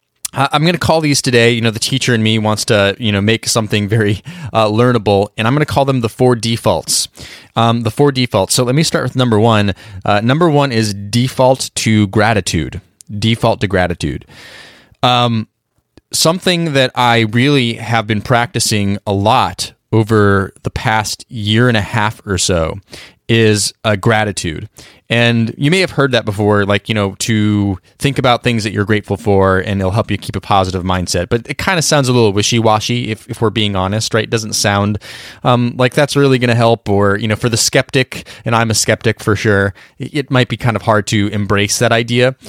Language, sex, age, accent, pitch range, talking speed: English, male, 20-39, American, 105-125 Hz, 205 wpm